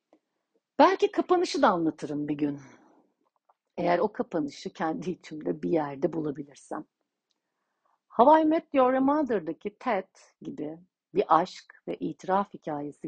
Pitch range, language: 150-240 Hz, Turkish